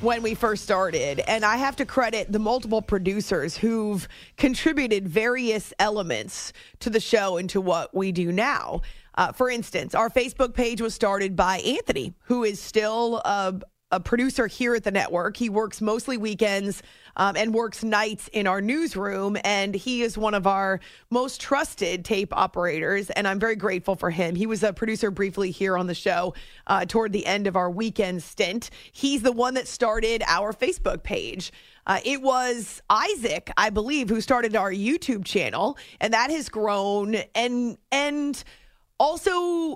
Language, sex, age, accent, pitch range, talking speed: English, female, 30-49, American, 195-245 Hz, 175 wpm